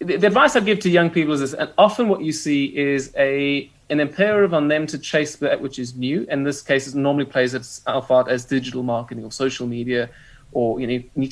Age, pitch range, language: 30-49, 130-150 Hz, English